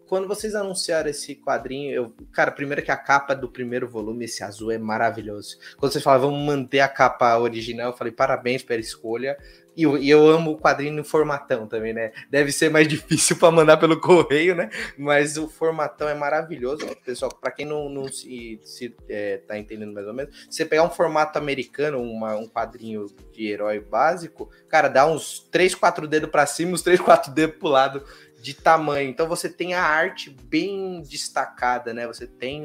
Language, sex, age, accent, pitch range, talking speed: Portuguese, male, 20-39, Brazilian, 120-155 Hz, 195 wpm